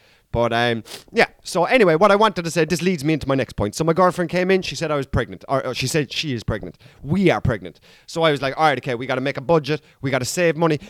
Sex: male